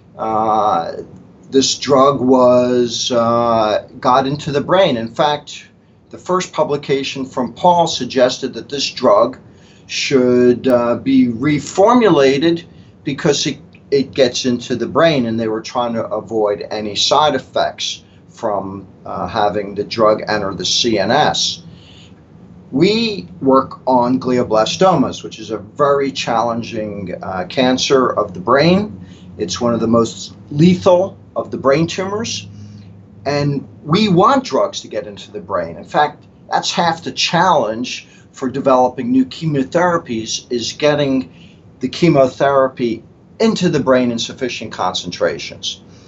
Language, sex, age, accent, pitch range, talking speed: English, male, 40-59, American, 115-145 Hz, 130 wpm